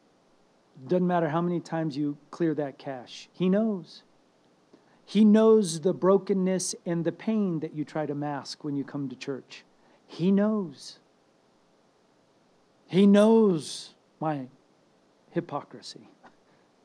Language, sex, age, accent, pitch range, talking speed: English, male, 40-59, American, 135-205 Hz, 120 wpm